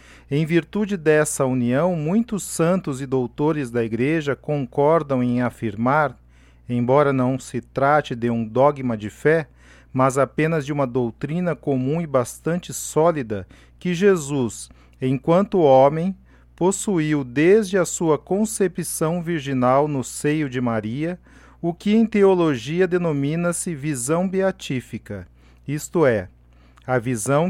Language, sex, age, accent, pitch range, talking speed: Portuguese, male, 40-59, Brazilian, 125-170 Hz, 120 wpm